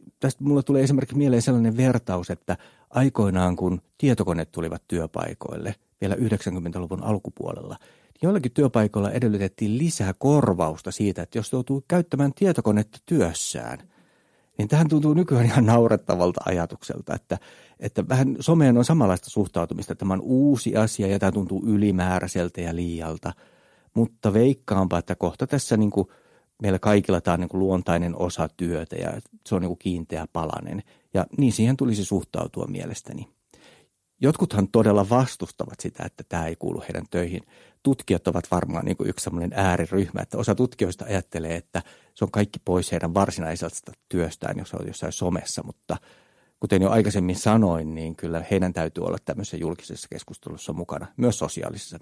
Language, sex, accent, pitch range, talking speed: Finnish, male, native, 90-120 Hz, 150 wpm